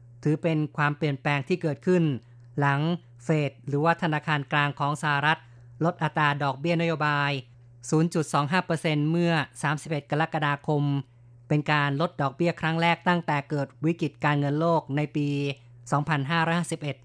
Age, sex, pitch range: 30-49, female, 140-160 Hz